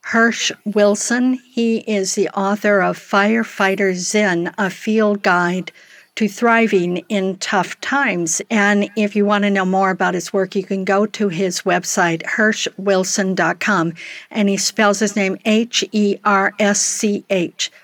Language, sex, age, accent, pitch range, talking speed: English, female, 50-69, American, 185-220 Hz, 135 wpm